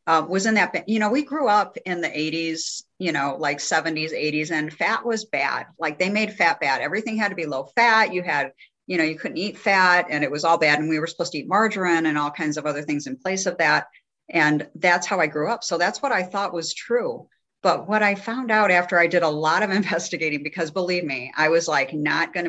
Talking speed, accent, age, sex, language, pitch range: 255 wpm, American, 50-69, female, English, 150-200 Hz